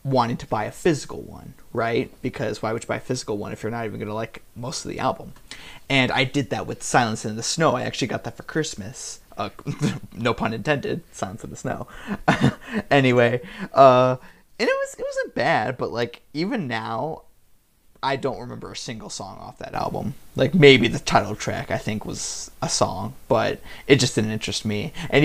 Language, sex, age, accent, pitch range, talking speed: English, male, 30-49, American, 115-145 Hz, 205 wpm